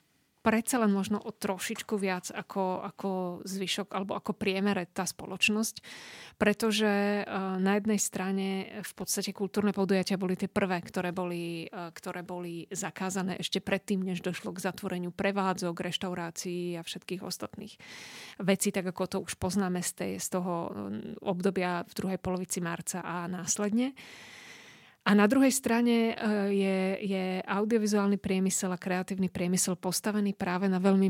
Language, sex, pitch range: Slovak, female, 185-210 Hz